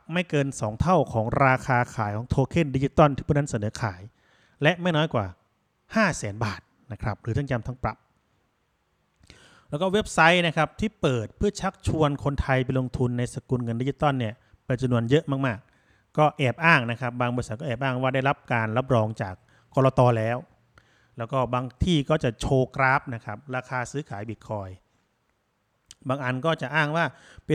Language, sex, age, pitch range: Thai, male, 30-49, 115-150 Hz